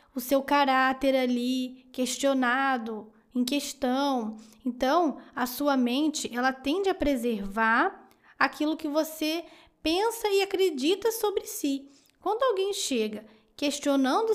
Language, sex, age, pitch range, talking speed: Portuguese, female, 10-29, 255-335 Hz, 115 wpm